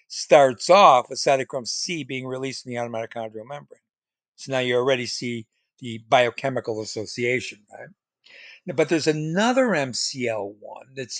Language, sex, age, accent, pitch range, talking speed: English, male, 60-79, American, 120-155 Hz, 140 wpm